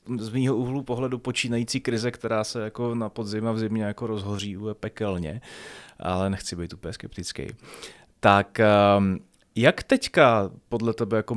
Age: 30-49